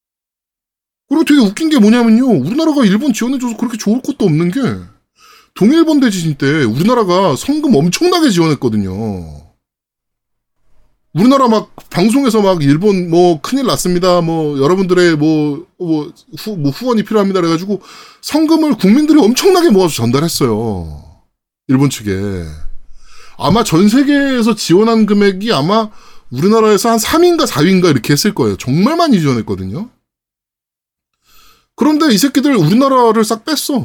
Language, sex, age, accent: Korean, male, 20-39, native